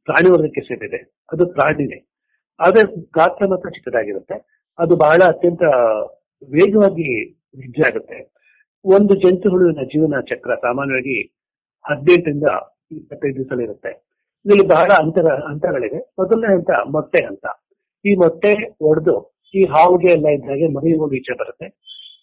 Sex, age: male, 60-79